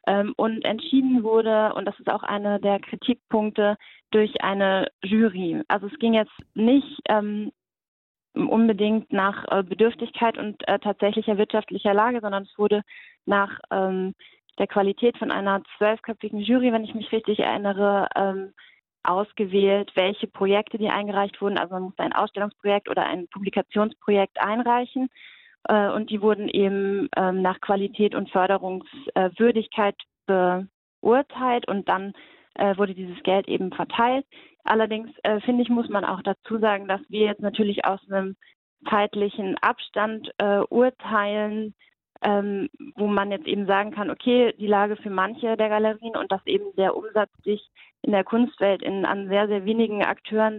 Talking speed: 140 wpm